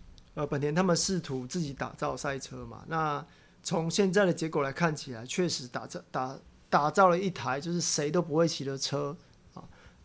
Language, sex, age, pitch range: Chinese, male, 30-49, 145-175 Hz